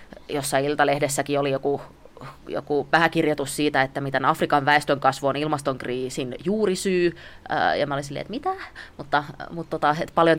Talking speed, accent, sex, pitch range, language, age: 145 wpm, native, female, 135-160 Hz, Finnish, 20-39